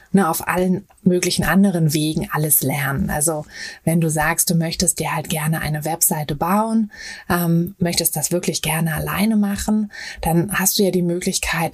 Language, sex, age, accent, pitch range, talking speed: German, female, 20-39, German, 155-190 Hz, 165 wpm